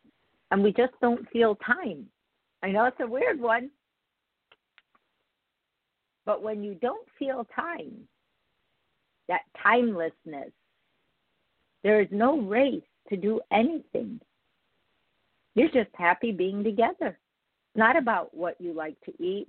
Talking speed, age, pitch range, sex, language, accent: 120 wpm, 50-69, 165-230 Hz, female, English, American